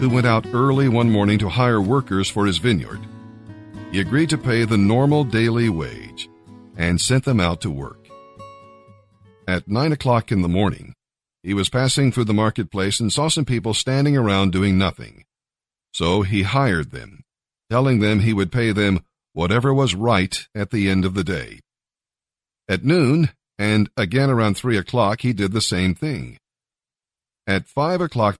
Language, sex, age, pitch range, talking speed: English, male, 50-69, 100-130 Hz, 170 wpm